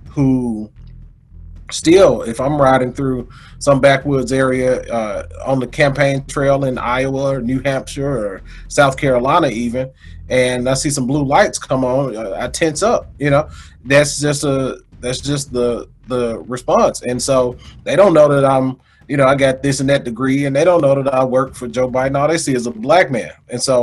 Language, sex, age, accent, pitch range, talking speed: English, male, 30-49, American, 120-145 Hz, 195 wpm